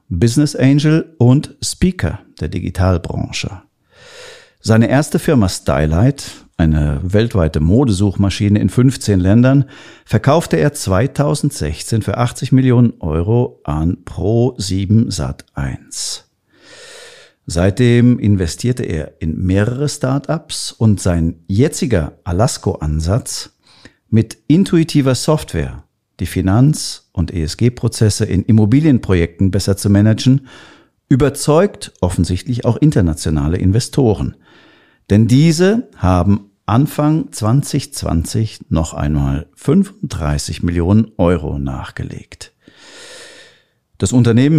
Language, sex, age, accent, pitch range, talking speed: German, male, 50-69, German, 90-130 Hz, 85 wpm